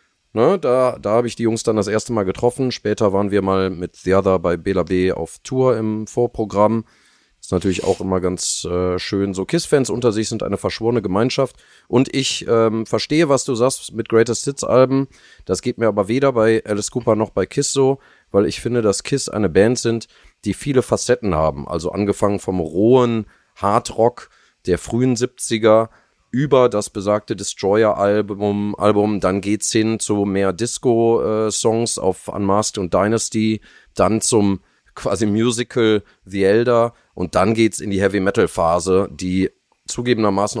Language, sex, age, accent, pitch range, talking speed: German, male, 30-49, German, 95-115 Hz, 165 wpm